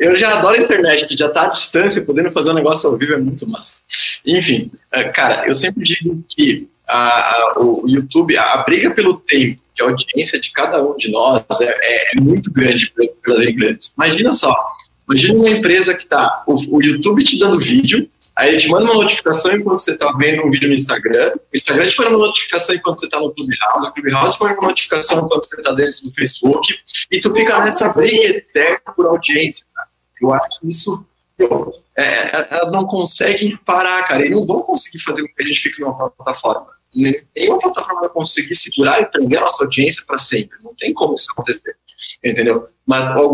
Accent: Brazilian